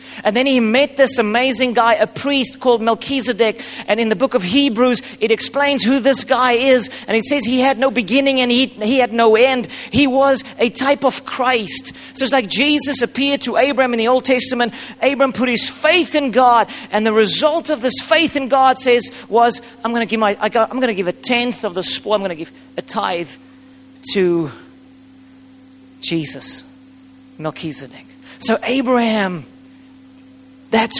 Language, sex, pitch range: English, male, 210-265 Hz